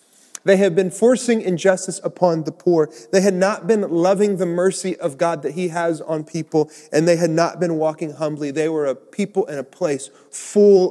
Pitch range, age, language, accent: 155-195 Hz, 30-49, English, American